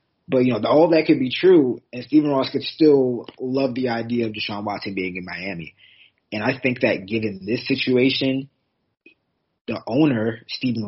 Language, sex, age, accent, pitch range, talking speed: English, male, 20-39, American, 105-130 Hz, 175 wpm